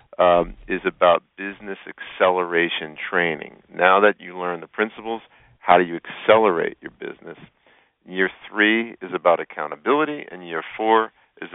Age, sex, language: 50-69, male, English